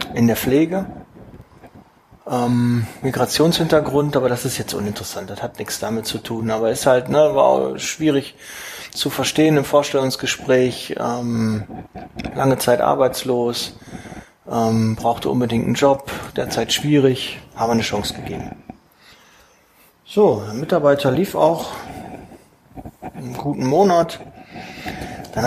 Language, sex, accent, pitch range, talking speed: German, male, German, 115-155 Hz, 120 wpm